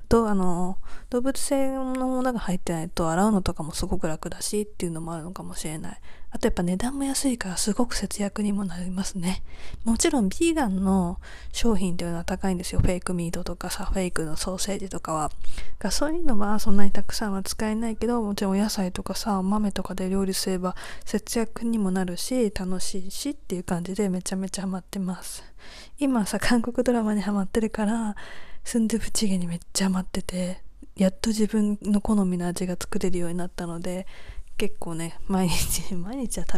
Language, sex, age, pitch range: Japanese, female, 20-39, 180-215 Hz